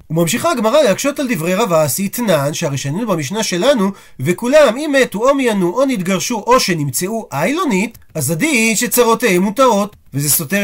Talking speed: 145 wpm